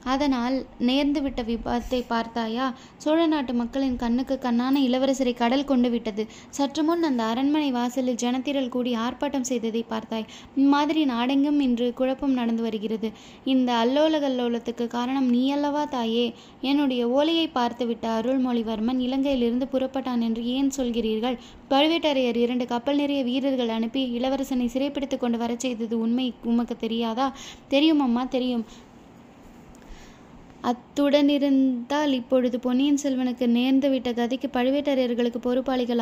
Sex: female